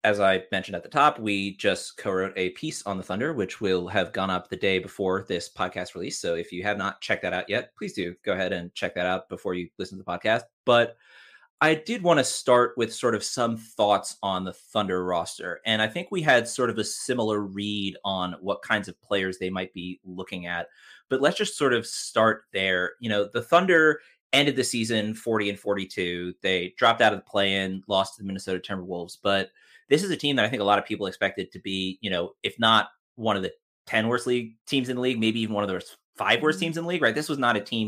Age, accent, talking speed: 30-49, American, 250 wpm